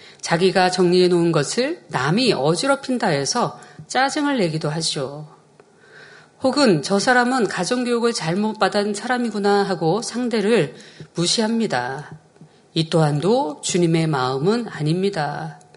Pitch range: 170-240 Hz